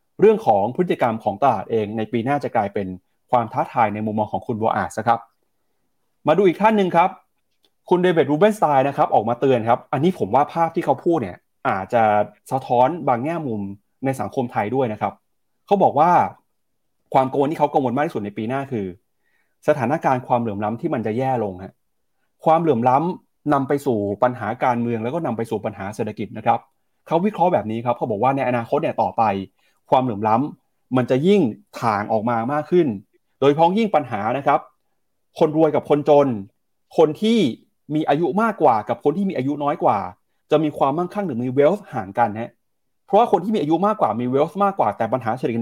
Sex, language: male, Thai